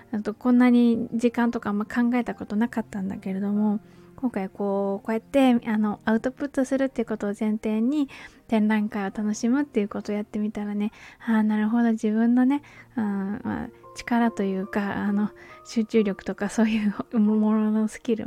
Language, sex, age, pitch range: Japanese, female, 20-39, 215-255 Hz